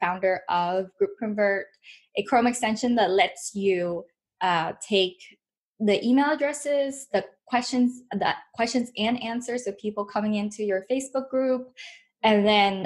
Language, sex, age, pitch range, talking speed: English, female, 10-29, 190-235 Hz, 140 wpm